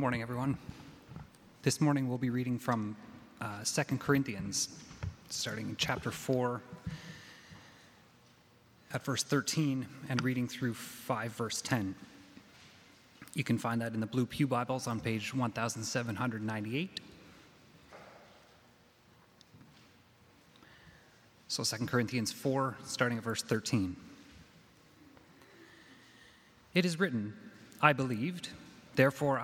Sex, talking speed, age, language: male, 105 wpm, 30-49, English